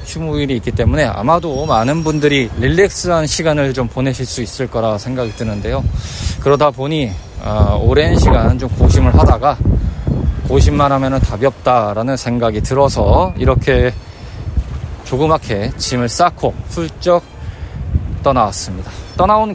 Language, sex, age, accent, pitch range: Korean, male, 20-39, native, 95-140 Hz